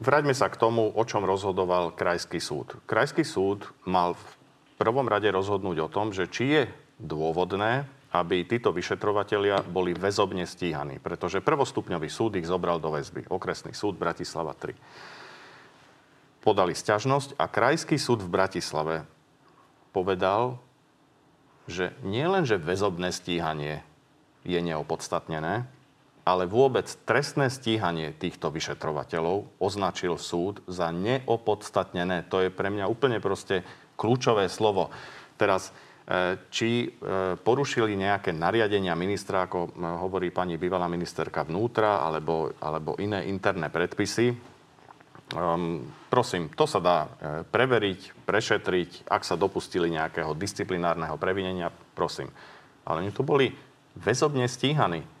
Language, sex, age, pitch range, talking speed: Slovak, male, 40-59, 85-115 Hz, 115 wpm